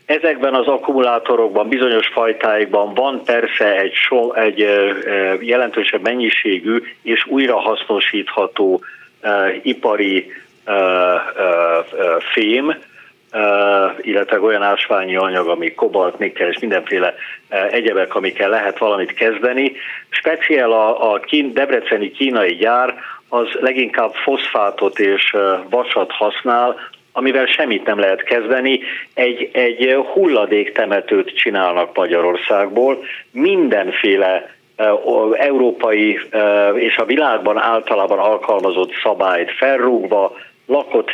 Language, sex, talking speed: Hungarian, male, 90 wpm